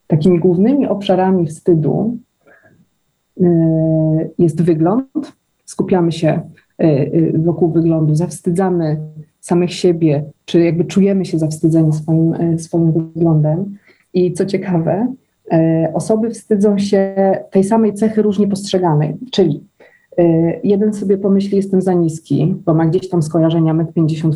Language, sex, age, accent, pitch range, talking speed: Polish, female, 30-49, native, 165-195 Hz, 115 wpm